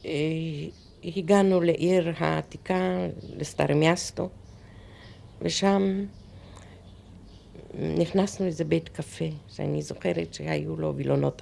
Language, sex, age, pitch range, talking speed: Hebrew, female, 50-69, 95-160 Hz, 75 wpm